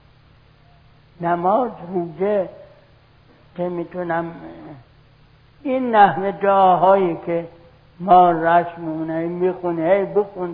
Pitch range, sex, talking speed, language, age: 140-190 Hz, male, 75 wpm, Persian, 60-79